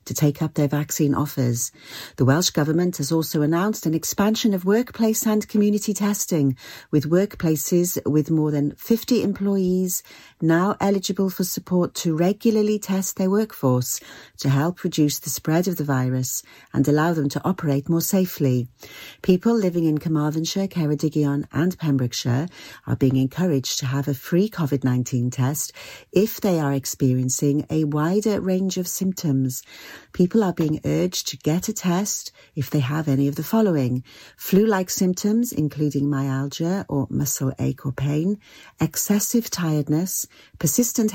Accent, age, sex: British, 40-59, female